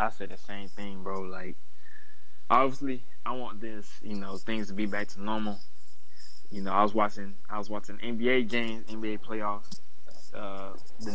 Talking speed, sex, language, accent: 180 wpm, male, English, American